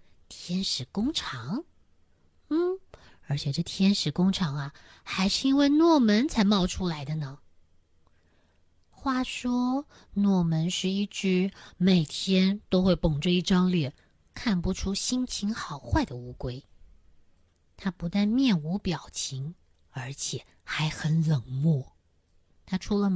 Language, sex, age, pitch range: Chinese, female, 20-39, 140-195 Hz